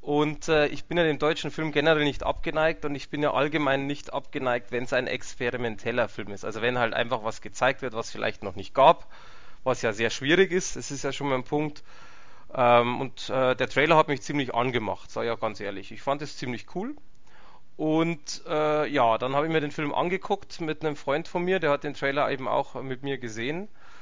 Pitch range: 130-160 Hz